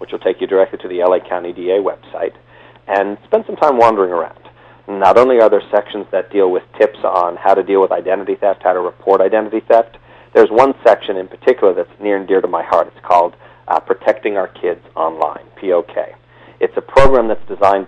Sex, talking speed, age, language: male, 210 wpm, 40-59, English